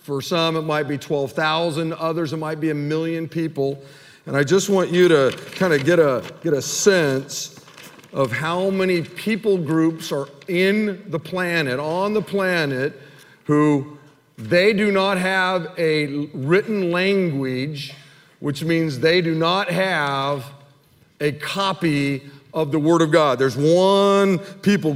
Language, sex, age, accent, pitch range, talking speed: English, male, 50-69, American, 140-190 Hz, 150 wpm